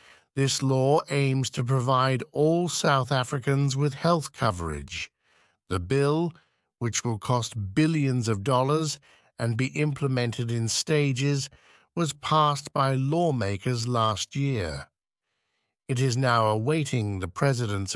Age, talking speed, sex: 60-79, 120 wpm, male